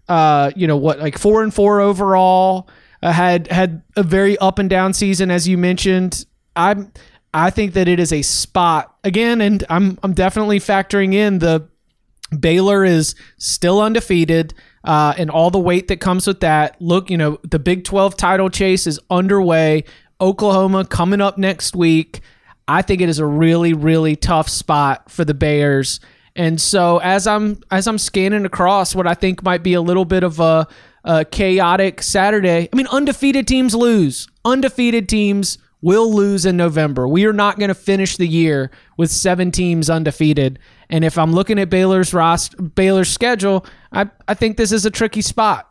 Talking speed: 180 wpm